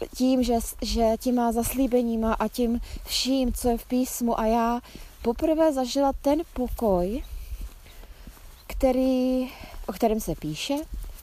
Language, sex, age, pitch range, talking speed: Czech, female, 20-39, 220-270 Hz, 130 wpm